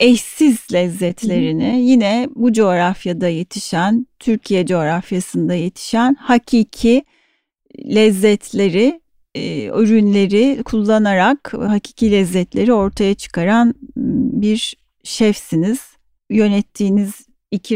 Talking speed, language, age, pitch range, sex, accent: 75 wpm, Turkish, 40-59, 195-255 Hz, female, native